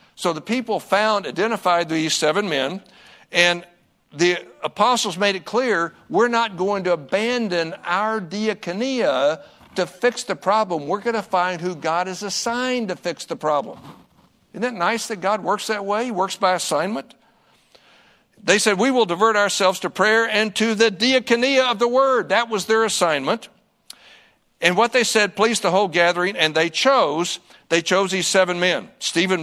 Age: 60-79